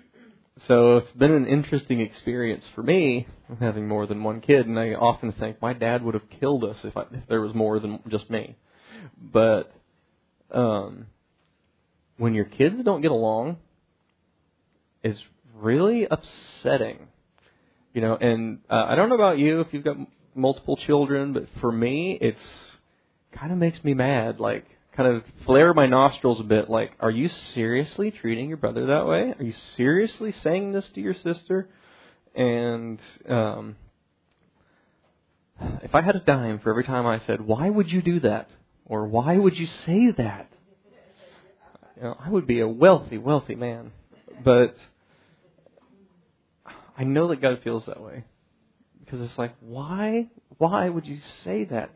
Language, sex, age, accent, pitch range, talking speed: English, male, 30-49, American, 110-160 Hz, 160 wpm